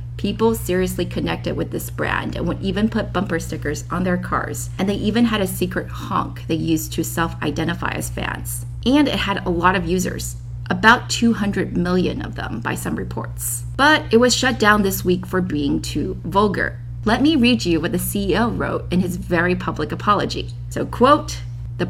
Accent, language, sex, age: American, Chinese, female, 30-49